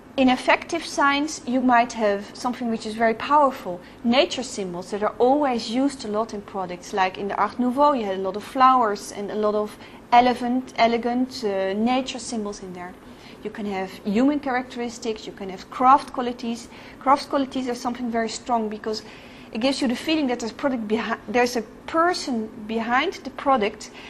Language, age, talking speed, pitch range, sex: French, 40-59, 185 wpm, 220-265 Hz, female